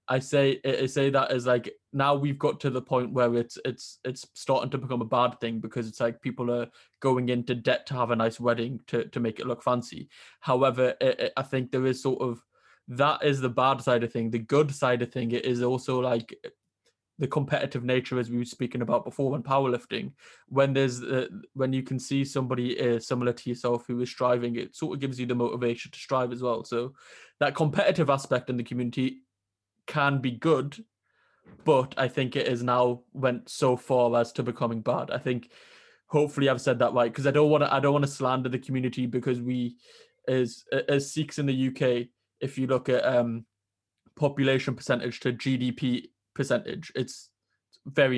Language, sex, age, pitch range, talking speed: English, male, 20-39, 120-135 Hz, 205 wpm